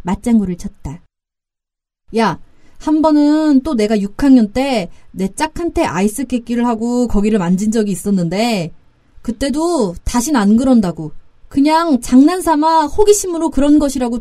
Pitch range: 210-295 Hz